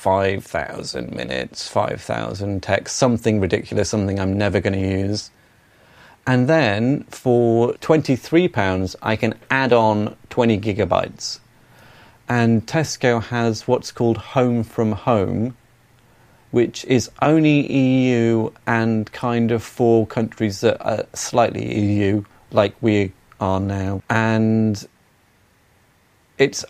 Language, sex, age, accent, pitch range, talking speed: English, male, 30-49, British, 105-125 Hz, 110 wpm